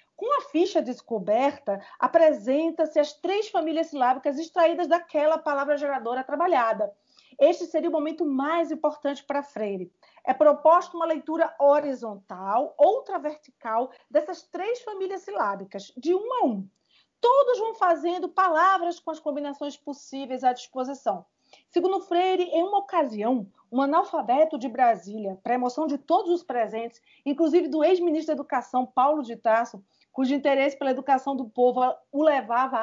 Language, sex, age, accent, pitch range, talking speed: Portuguese, female, 40-59, Brazilian, 250-320 Hz, 145 wpm